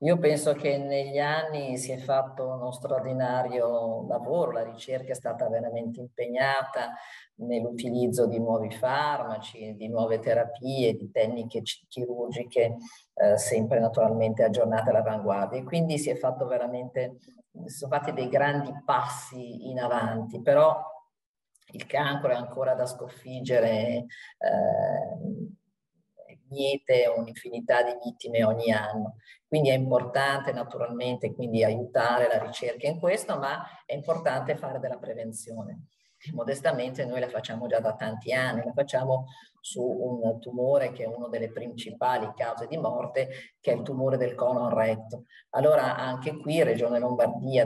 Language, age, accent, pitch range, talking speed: Italian, 40-59, native, 115-145 Hz, 135 wpm